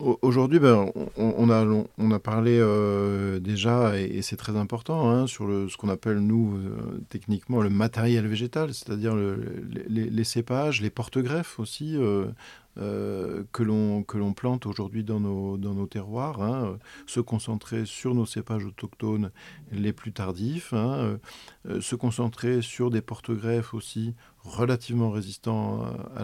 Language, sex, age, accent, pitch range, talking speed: French, male, 50-69, French, 100-120 Hz, 150 wpm